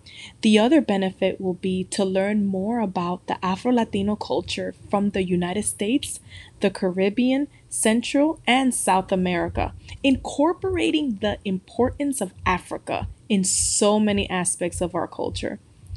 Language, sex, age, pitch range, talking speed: English, female, 20-39, 185-225 Hz, 130 wpm